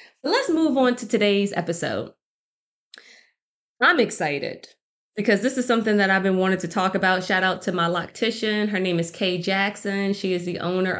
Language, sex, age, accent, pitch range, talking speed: English, female, 20-39, American, 185-240 Hz, 180 wpm